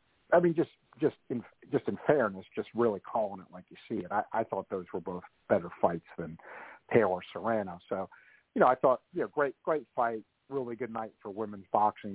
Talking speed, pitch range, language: 210 wpm, 105-130 Hz, English